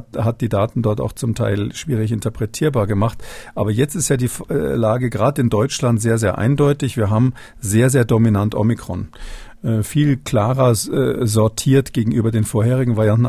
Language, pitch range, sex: German, 110-130 Hz, male